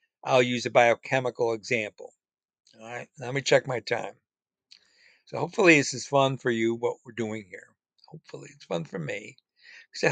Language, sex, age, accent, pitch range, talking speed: English, male, 60-79, American, 120-145 Hz, 180 wpm